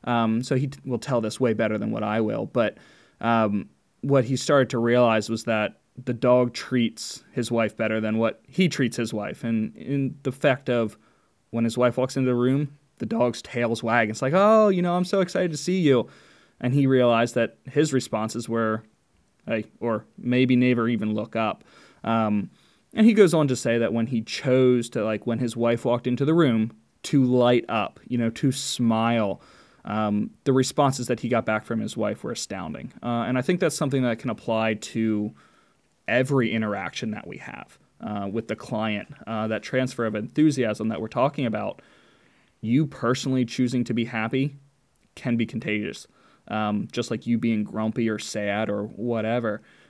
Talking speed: 195 wpm